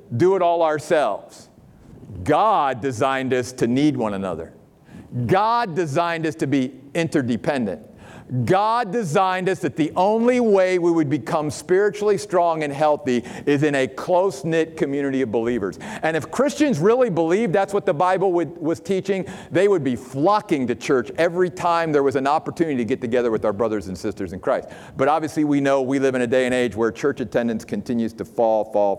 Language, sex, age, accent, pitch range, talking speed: English, male, 50-69, American, 130-210 Hz, 185 wpm